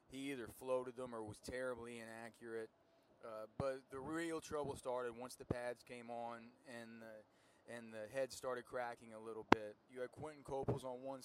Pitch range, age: 120-140 Hz, 20-39